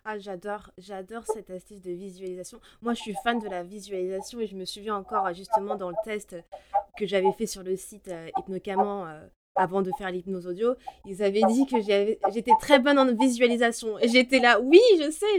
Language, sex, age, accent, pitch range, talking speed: French, female, 20-39, French, 200-260 Hz, 210 wpm